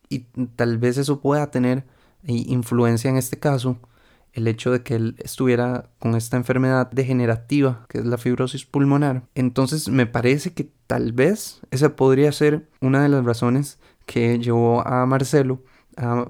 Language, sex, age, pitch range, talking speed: Spanish, male, 20-39, 120-140 Hz, 160 wpm